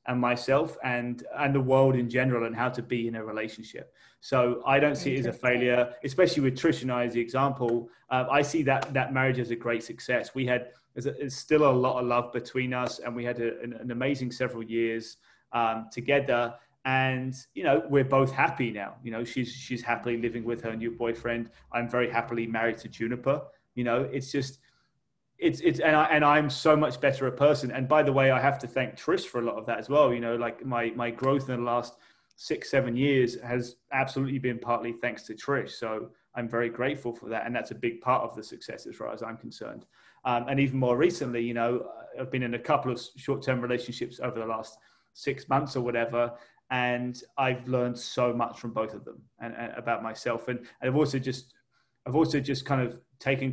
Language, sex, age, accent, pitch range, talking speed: English, male, 30-49, British, 120-135 Hz, 225 wpm